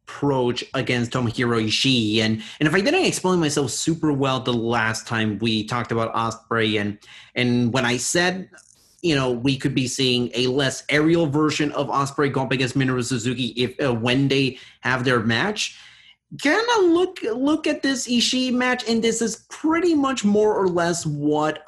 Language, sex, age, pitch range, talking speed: English, male, 30-49, 120-175 Hz, 185 wpm